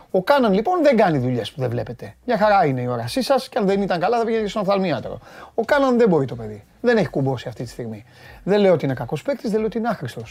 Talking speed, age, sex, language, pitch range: 275 wpm, 30-49, male, Greek, 130-195 Hz